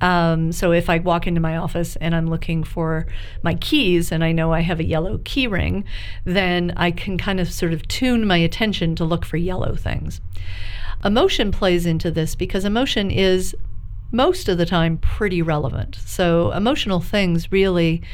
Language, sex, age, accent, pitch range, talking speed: English, female, 50-69, American, 160-190 Hz, 180 wpm